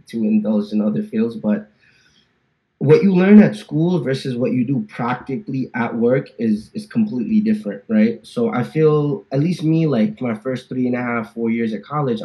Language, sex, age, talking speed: English, male, 20-39, 195 wpm